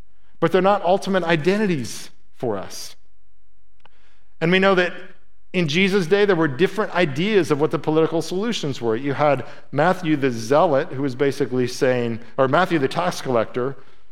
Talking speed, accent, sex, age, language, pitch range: 160 wpm, American, male, 50-69, English, 120-175 Hz